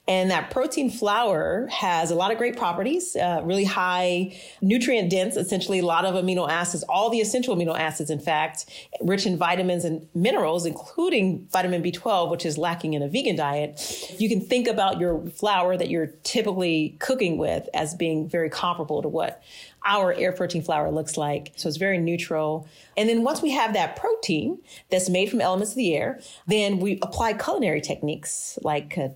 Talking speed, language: 185 wpm, English